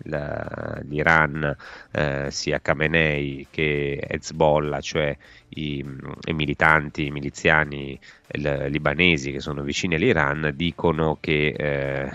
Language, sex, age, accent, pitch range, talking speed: Italian, male, 30-49, native, 70-80 Hz, 105 wpm